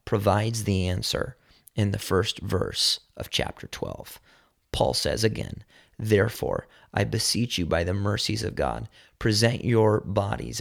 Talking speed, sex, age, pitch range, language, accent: 140 wpm, male, 30-49, 100-120 Hz, English, American